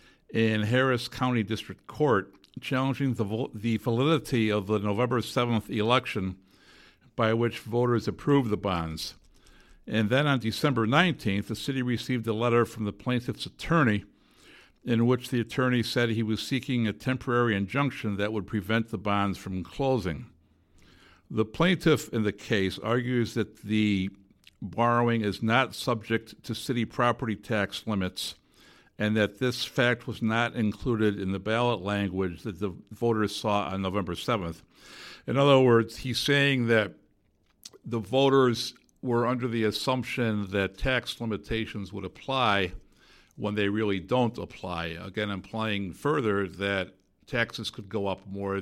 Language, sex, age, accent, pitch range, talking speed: English, male, 60-79, American, 100-120 Hz, 145 wpm